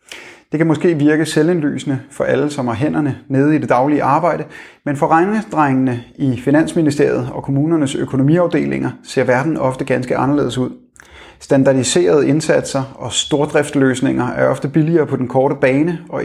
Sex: male